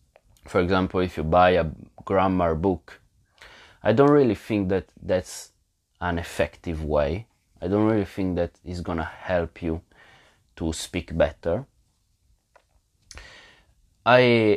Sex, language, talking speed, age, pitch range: male, English, 130 wpm, 20-39, 85-110 Hz